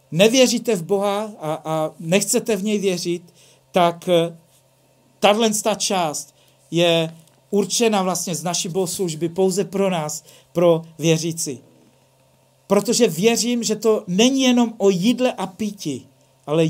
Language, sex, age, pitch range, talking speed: Czech, male, 50-69, 170-215 Hz, 120 wpm